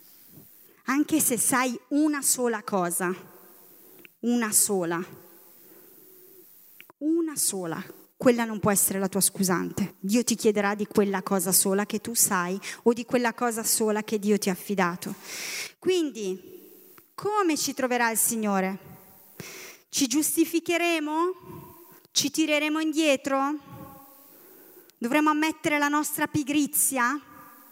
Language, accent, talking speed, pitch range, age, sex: Italian, native, 115 wpm, 205-300 Hz, 30-49, female